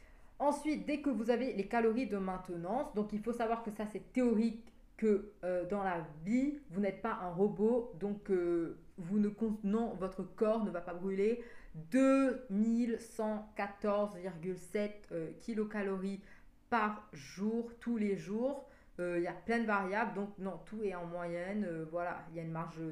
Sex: female